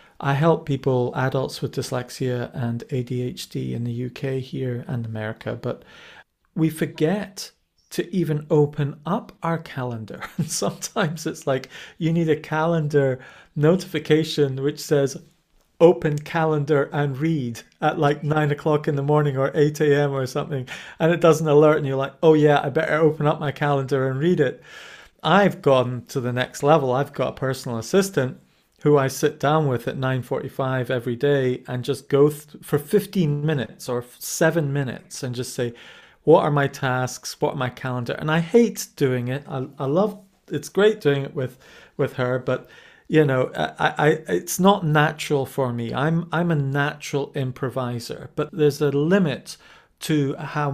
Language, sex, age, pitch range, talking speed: English, male, 40-59, 130-155 Hz, 170 wpm